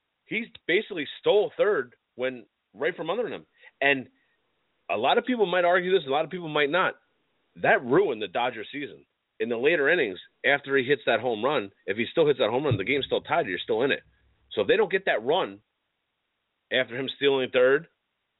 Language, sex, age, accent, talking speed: English, male, 30-49, American, 210 wpm